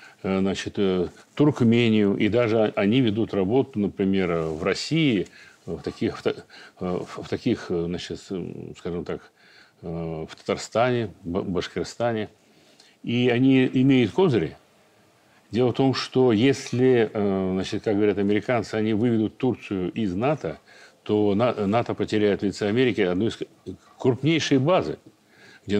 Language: Russian